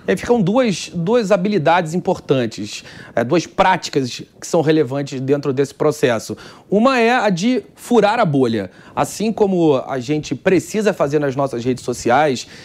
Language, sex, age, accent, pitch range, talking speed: Portuguese, male, 30-49, Brazilian, 150-190 Hz, 140 wpm